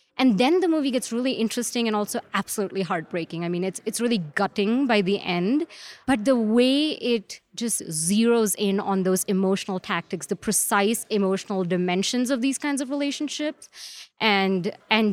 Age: 20-39